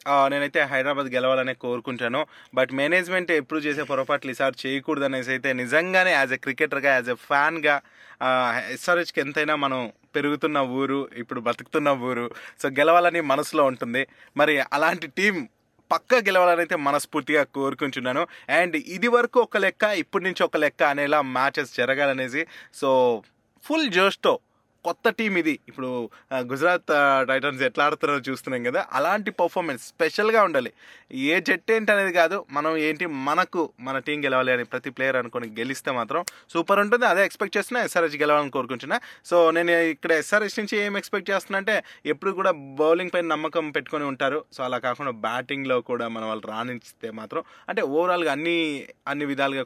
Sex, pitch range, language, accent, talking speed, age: male, 130-175 Hz, Telugu, native, 145 wpm, 20-39